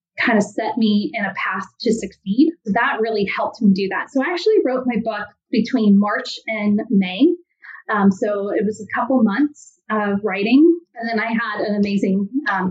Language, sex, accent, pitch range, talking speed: English, female, American, 205-260 Hz, 195 wpm